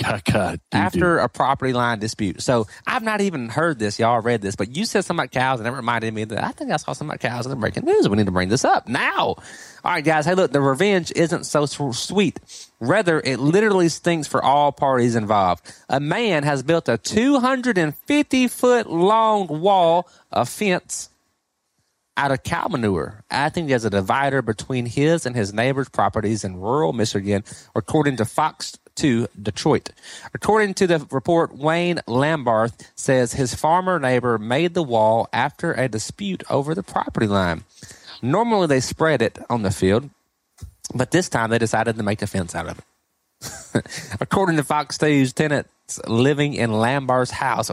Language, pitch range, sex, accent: English, 110-165 Hz, male, American